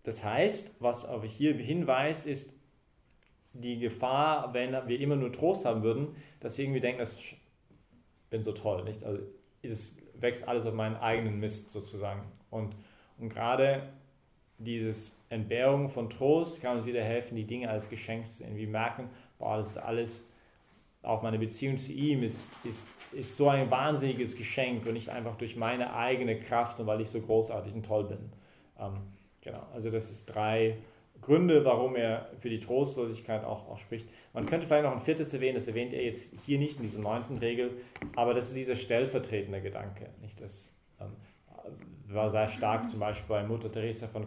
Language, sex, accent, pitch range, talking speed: English, male, German, 110-125 Hz, 180 wpm